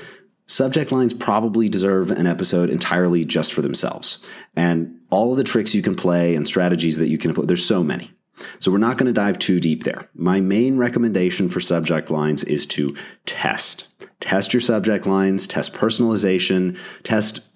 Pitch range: 85-115 Hz